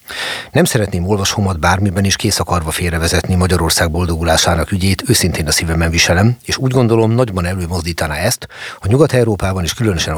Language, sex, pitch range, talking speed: Hungarian, male, 85-105 Hz, 140 wpm